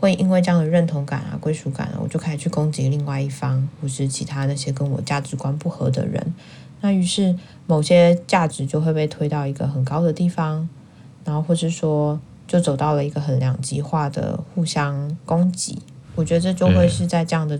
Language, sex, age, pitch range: Chinese, female, 20-39, 135-160 Hz